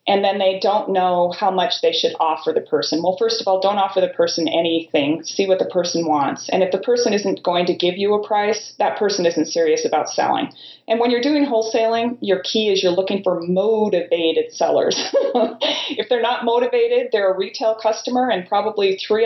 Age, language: 30-49, English